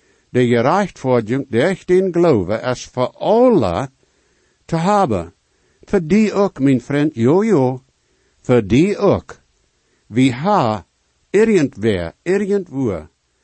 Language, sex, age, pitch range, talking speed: English, male, 60-79, 120-180 Hz, 110 wpm